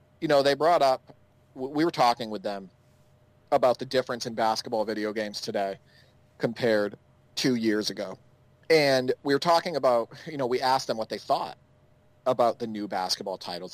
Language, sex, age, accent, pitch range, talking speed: English, male, 40-59, American, 115-140 Hz, 175 wpm